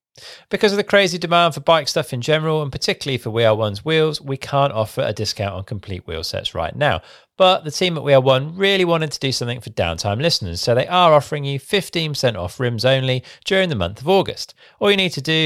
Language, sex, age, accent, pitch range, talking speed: English, male, 40-59, British, 115-165 Hz, 235 wpm